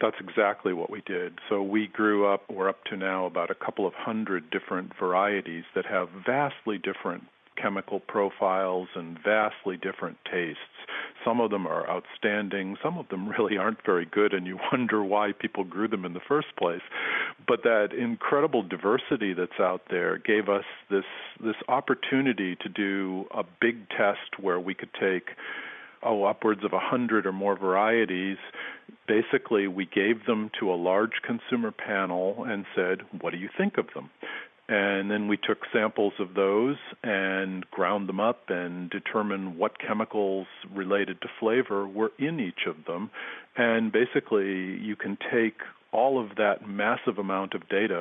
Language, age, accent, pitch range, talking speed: English, 50-69, American, 95-105 Hz, 165 wpm